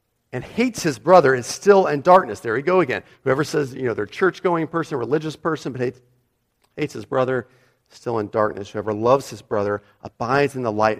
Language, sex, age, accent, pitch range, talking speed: English, male, 40-59, American, 110-145 Hz, 200 wpm